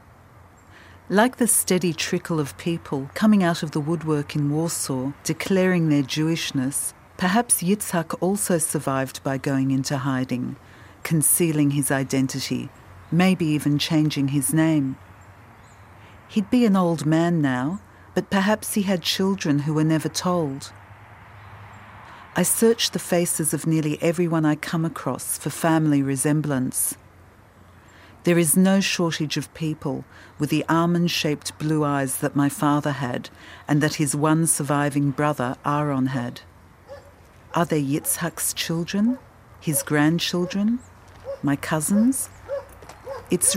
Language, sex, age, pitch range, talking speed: English, female, 50-69, 135-175 Hz, 125 wpm